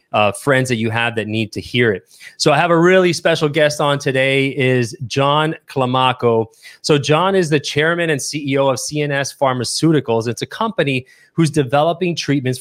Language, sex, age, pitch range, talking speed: English, male, 30-49, 120-145 Hz, 180 wpm